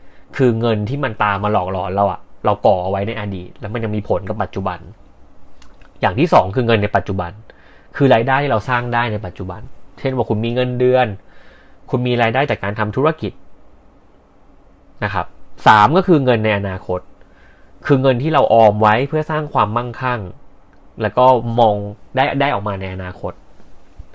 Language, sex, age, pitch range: Thai, male, 20-39, 95-120 Hz